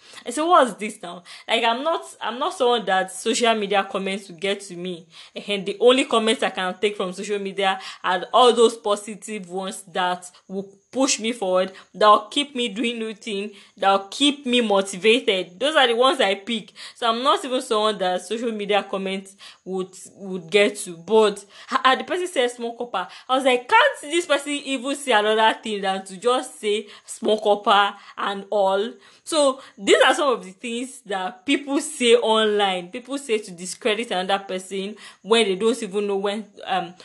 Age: 20-39